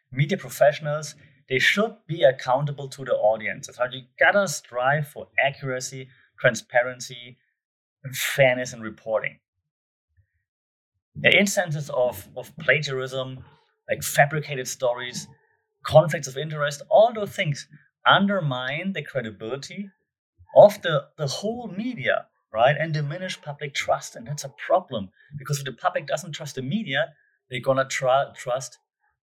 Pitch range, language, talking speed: 130-160 Hz, English, 130 wpm